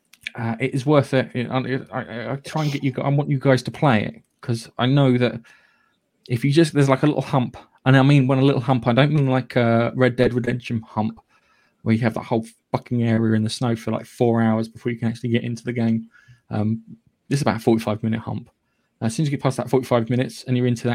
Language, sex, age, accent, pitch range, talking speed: English, male, 20-39, British, 115-135 Hz, 260 wpm